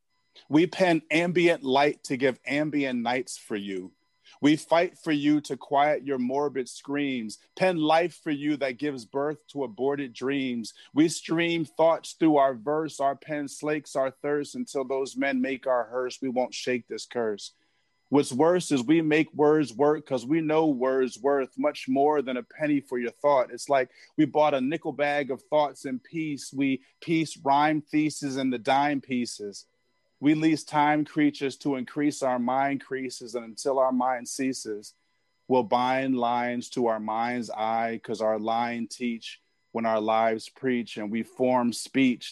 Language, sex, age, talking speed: English, male, 30-49, 175 wpm